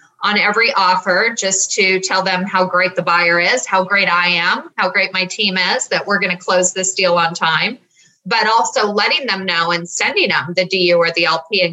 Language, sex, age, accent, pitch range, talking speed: English, female, 30-49, American, 180-220 Hz, 225 wpm